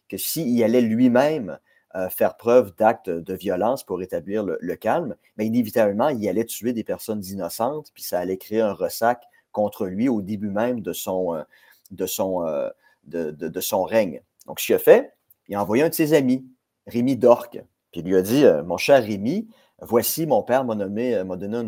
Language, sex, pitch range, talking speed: French, male, 95-125 Hz, 215 wpm